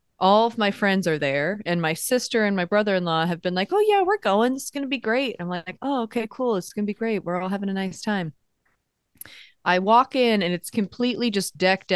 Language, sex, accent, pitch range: English, female, American, 160-210 Hz